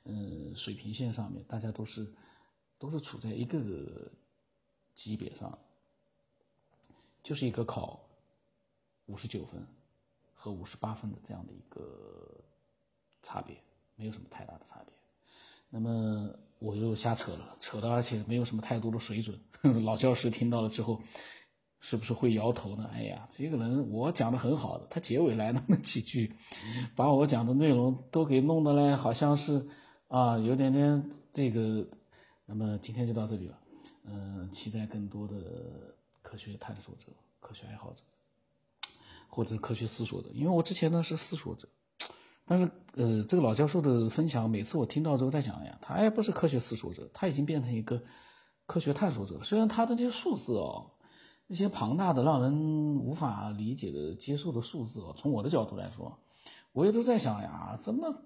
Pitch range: 110-145 Hz